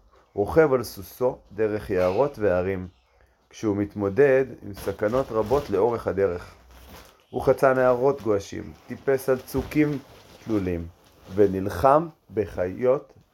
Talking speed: 105 wpm